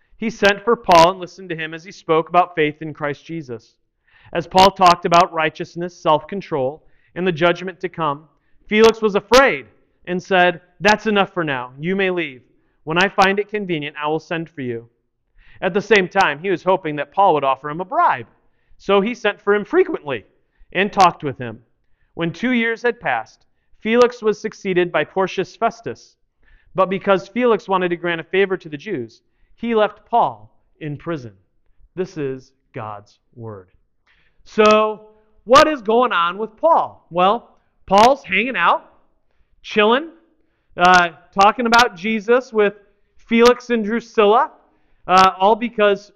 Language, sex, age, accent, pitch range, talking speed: English, male, 40-59, American, 155-215 Hz, 165 wpm